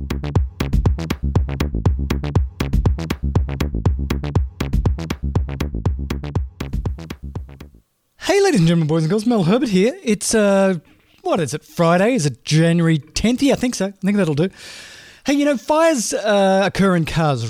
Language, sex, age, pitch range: English, male, 30-49, 140-210 Hz